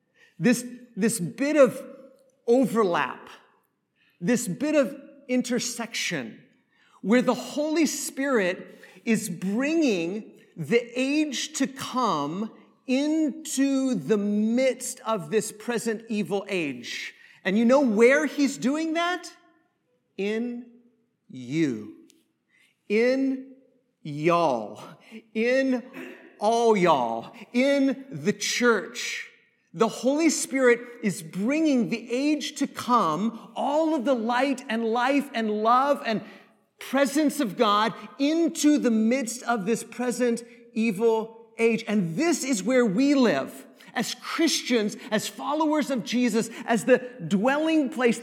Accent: American